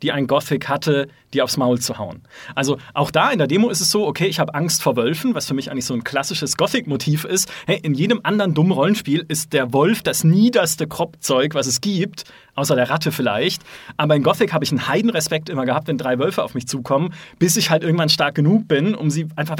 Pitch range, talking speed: 135-185 Hz, 235 wpm